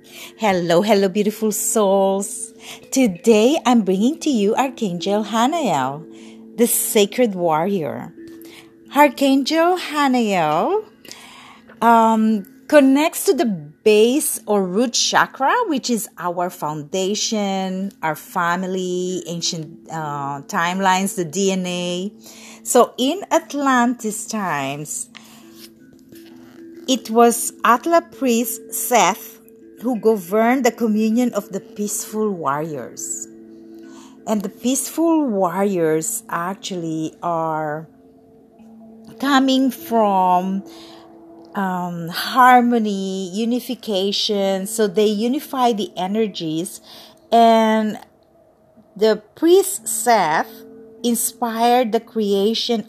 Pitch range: 185-235 Hz